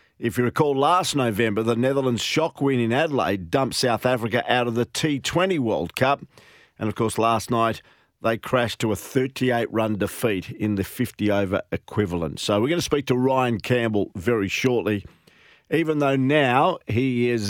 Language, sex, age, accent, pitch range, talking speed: English, male, 50-69, Australian, 105-130 Hz, 170 wpm